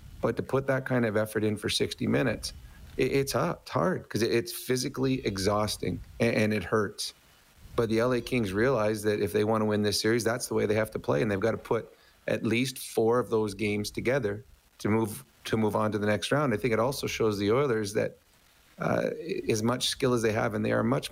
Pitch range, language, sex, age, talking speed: 105-120 Hz, English, male, 30-49, 240 wpm